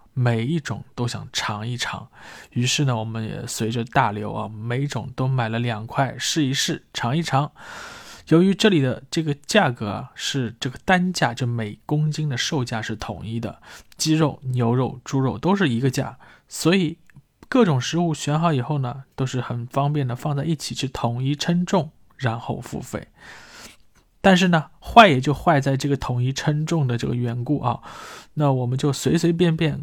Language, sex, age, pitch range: Chinese, male, 20-39, 120-150 Hz